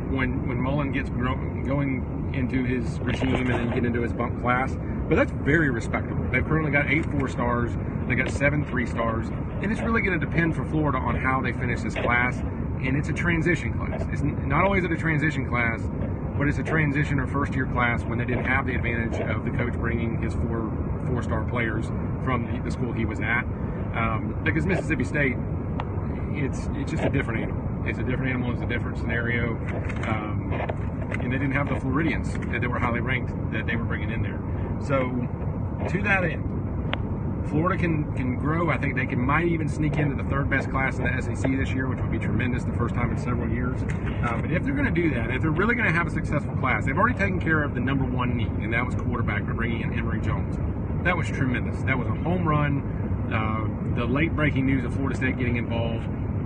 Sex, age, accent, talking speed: male, 40-59, American, 220 wpm